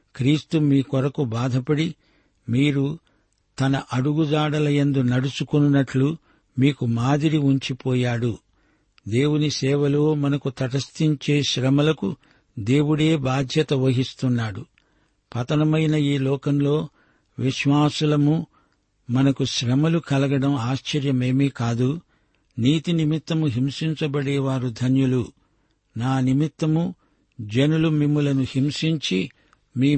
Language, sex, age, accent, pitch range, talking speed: Telugu, male, 60-79, native, 130-150 Hz, 75 wpm